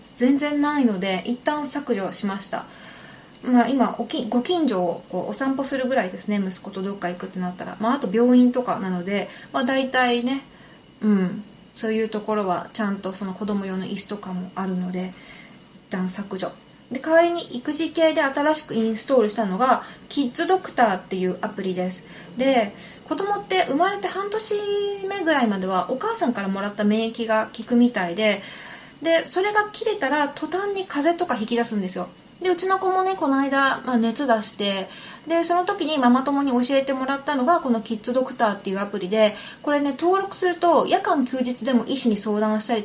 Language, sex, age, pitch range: Japanese, female, 20-39, 205-300 Hz